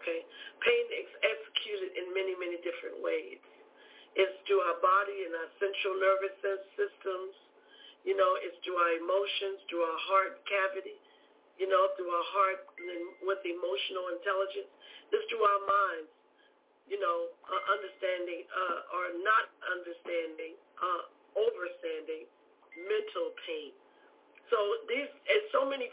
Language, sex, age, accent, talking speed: English, female, 50-69, American, 125 wpm